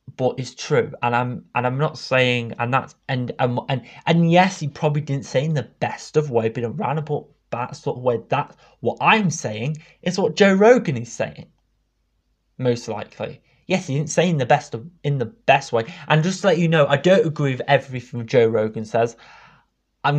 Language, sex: English, male